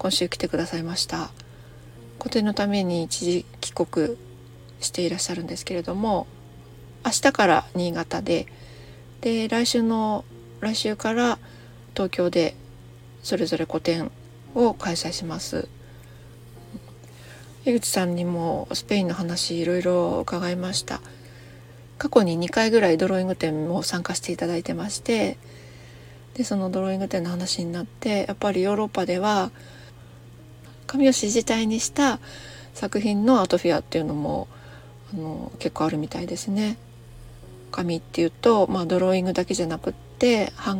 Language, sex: Japanese, female